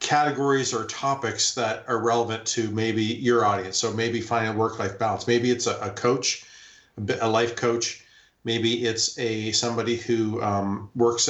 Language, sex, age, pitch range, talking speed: English, male, 40-59, 110-125 Hz, 165 wpm